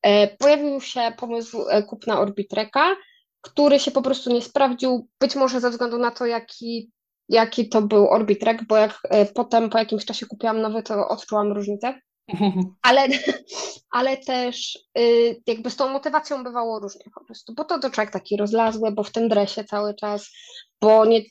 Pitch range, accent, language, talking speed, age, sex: 210-265 Hz, native, Polish, 175 wpm, 20-39, female